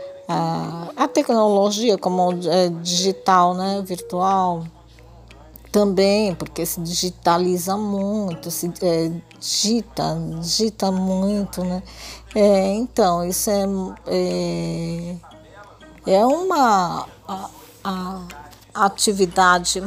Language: Portuguese